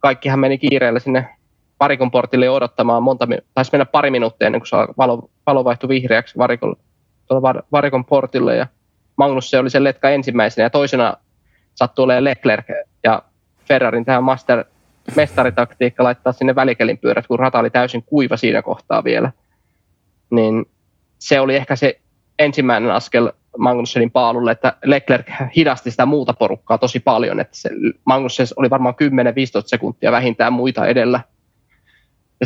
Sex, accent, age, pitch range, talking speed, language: male, native, 20-39, 115-135 Hz, 140 wpm, Finnish